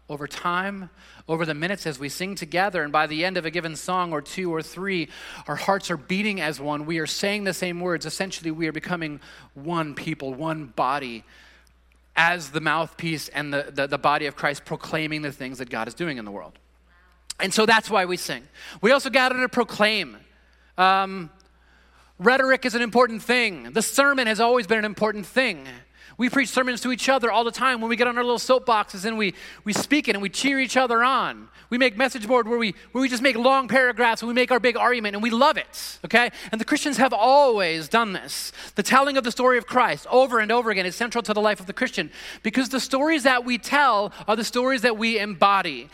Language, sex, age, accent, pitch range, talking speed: English, male, 30-49, American, 160-240 Hz, 225 wpm